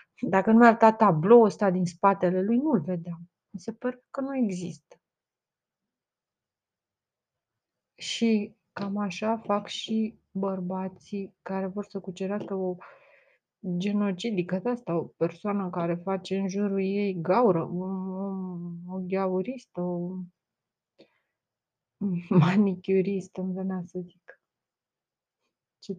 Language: Romanian